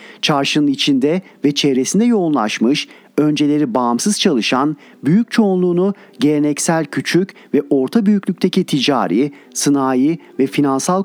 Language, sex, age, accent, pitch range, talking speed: Turkish, male, 40-59, native, 140-185 Hz, 105 wpm